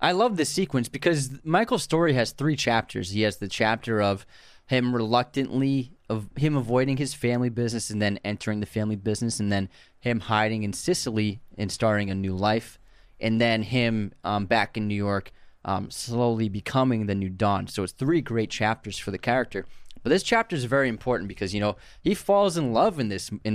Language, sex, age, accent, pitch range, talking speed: English, male, 20-39, American, 105-135 Hz, 200 wpm